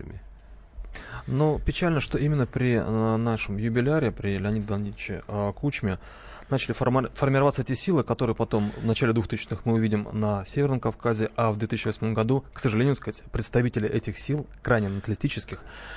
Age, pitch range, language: 30-49, 110-135 Hz, Russian